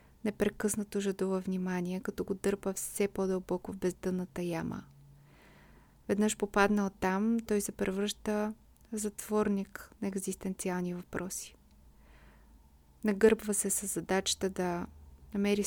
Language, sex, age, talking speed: Bulgarian, female, 30-49, 105 wpm